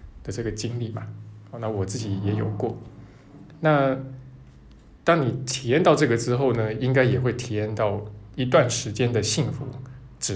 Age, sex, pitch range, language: 20-39, male, 105-130 Hz, Chinese